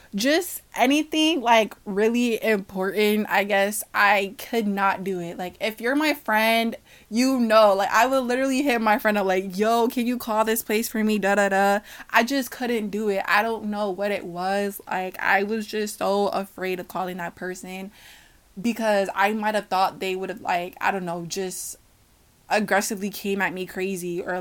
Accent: American